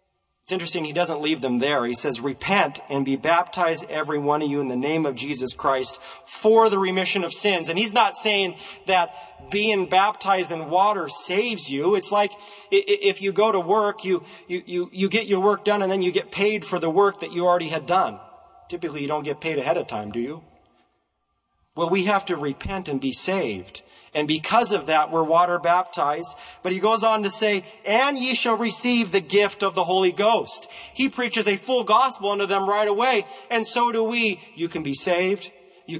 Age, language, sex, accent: 40-59, English, male, American